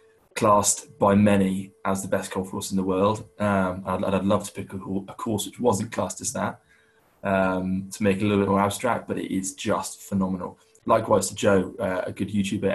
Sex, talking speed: male, 210 wpm